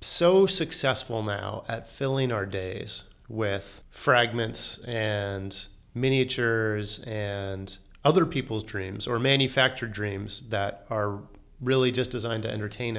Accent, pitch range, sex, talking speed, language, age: American, 110-130 Hz, male, 115 wpm, English, 30-49